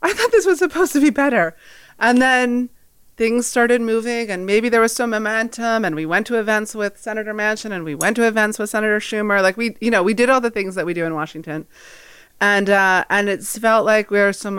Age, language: 30-49, English